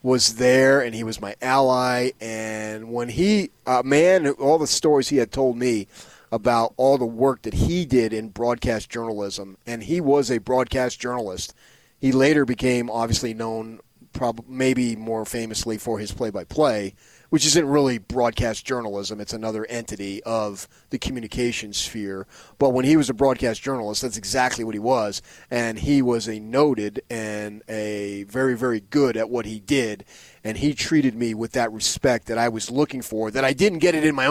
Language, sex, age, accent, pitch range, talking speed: English, male, 30-49, American, 110-135 Hz, 180 wpm